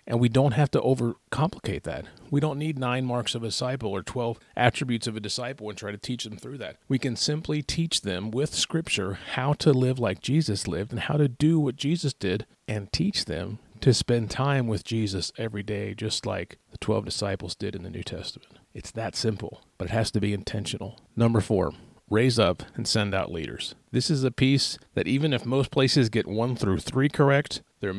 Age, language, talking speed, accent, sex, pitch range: 40-59, English, 215 wpm, American, male, 100-125 Hz